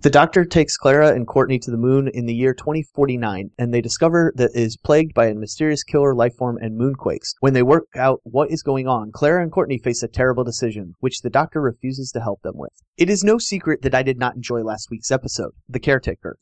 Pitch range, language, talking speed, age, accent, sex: 120-150 Hz, English, 235 wpm, 30-49, American, male